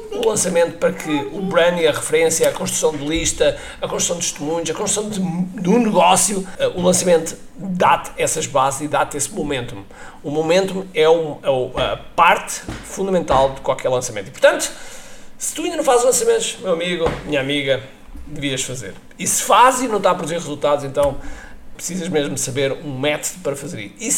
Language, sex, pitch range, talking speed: Portuguese, male, 140-190 Hz, 185 wpm